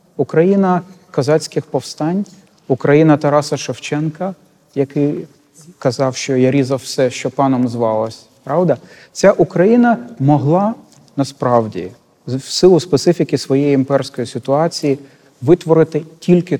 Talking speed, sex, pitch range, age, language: 100 wpm, male, 120-160 Hz, 40-59, Ukrainian